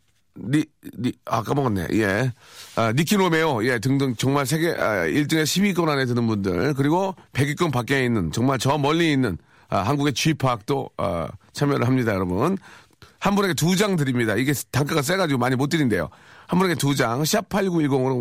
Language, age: Korean, 40-59